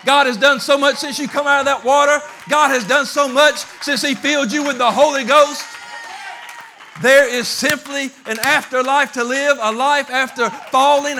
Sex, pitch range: male, 240-275 Hz